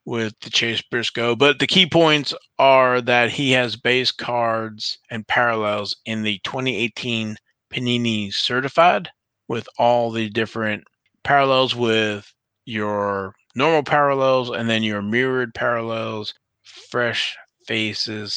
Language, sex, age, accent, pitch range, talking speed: English, male, 30-49, American, 110-130 Hz, 120 wpm